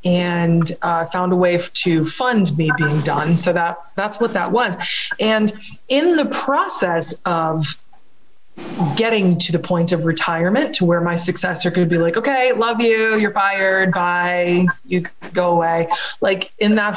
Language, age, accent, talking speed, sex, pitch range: English, 20-39, American, 165 wpm, female, 175-210 Hz